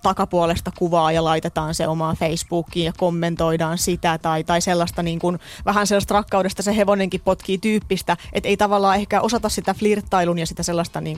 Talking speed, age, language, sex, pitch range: 175 wpm, 30-49, Finnish, female, 175-205 Hz